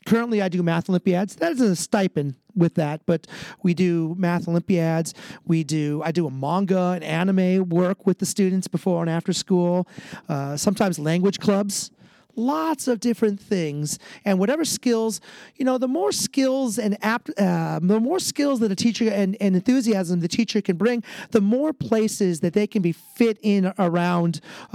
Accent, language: American, English